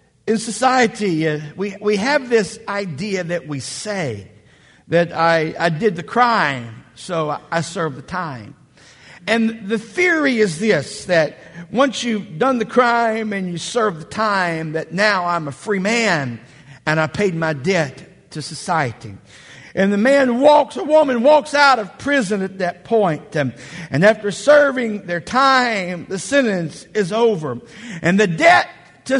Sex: male